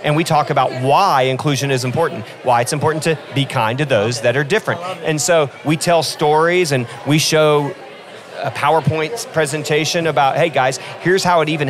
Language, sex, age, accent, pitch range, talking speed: English, male, 40-59, American, 135-165 Hz, 190 wpm